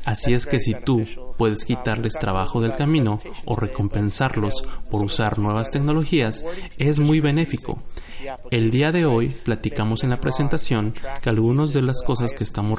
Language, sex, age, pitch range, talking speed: Spanish, male, 30-49, 115-145 Hz, 160 wpm